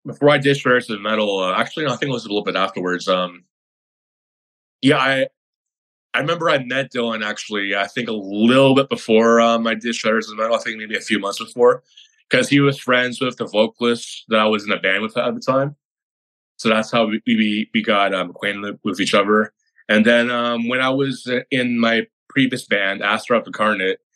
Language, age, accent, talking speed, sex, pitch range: English, 20-39, American, 210 wpm, male, 100-120 Hz